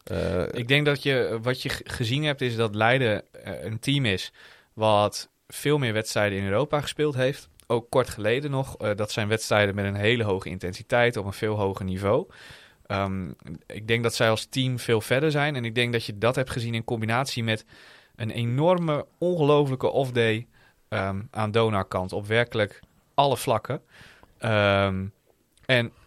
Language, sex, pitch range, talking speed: English, male, 105-125 Hz, 180 wpm